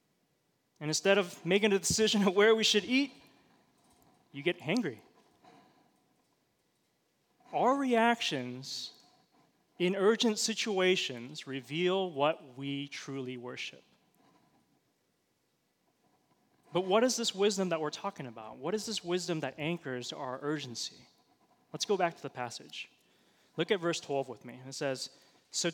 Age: 20-39